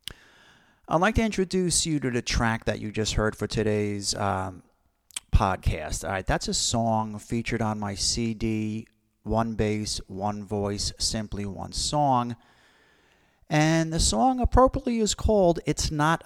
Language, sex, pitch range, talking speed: English, male, 105-125 Hz, 150 wpm